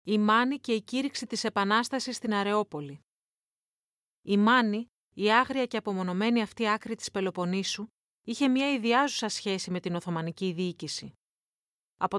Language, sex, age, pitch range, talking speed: Greek, female, 30-49, 195-250 Hz, 140 wpm